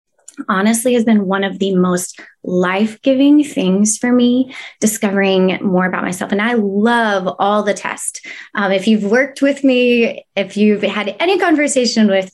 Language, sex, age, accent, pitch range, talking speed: English, female, 20-39, American, 185-235 Hz, 160 wpm